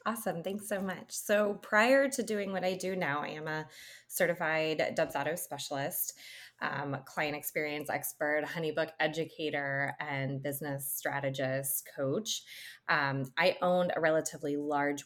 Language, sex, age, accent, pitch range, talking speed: English, female, 20-39, American, 150-190 Hz, 135 wpm